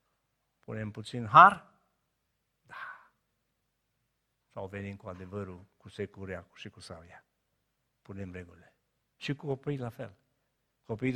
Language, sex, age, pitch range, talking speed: Romanian, male, 50-69, 105-130 Hz, 115 wpm